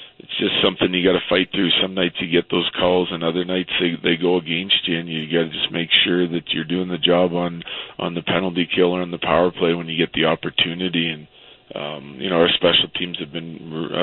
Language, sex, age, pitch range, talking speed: English, male, 40-59, 80-90 Hz, 240 wpm